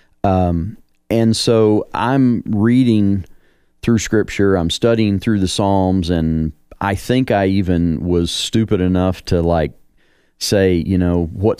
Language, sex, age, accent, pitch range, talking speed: English, male, 40-59, American, 85-105 Hz, 135 wpm